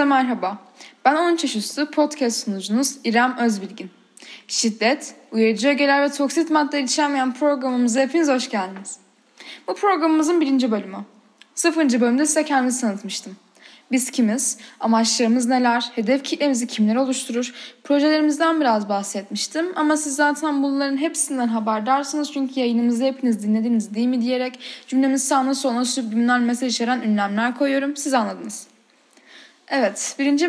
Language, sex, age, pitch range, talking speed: Turkish, female, 10-29, 230-300 Hz, 125 wpm